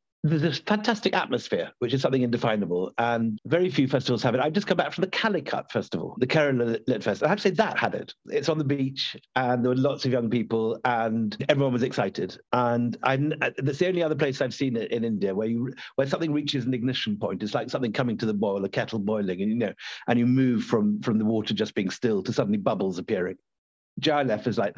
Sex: male